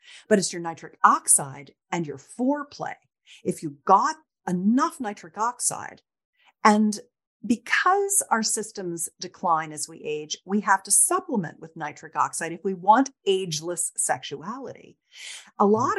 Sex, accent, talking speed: female, American, 135 wpm